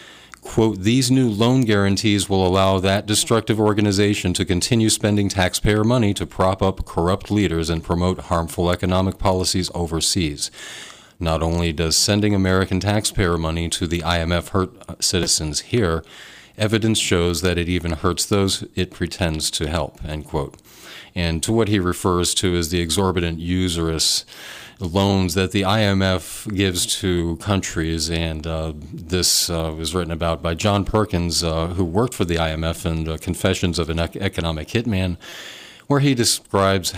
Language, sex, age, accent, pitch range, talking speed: English, male, 40-59, American, 85-100 Hz, 155 wpm